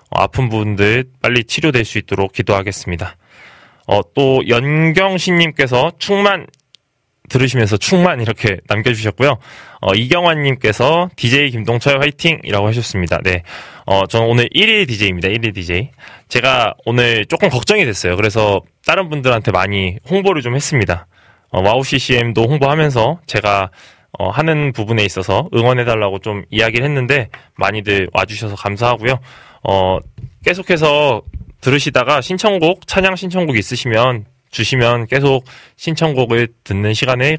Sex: male